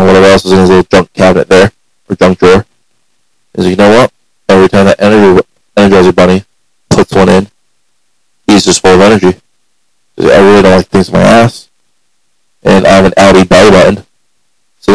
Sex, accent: male, American